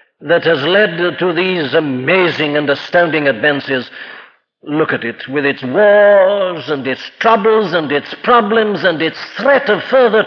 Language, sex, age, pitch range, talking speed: English, male, 60-79, 160-210 Hz, 150 wpm